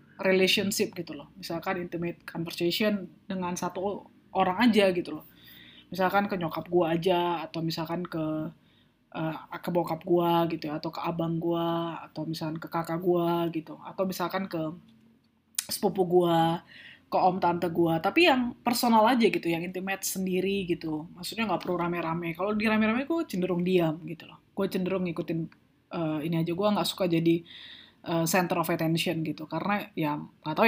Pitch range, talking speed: 165-195 Hz, 160 wpm